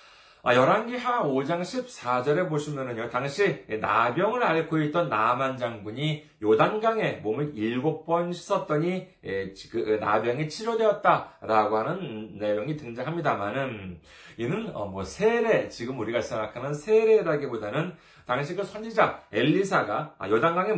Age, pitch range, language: 40-59, 130-220 Hz, Korean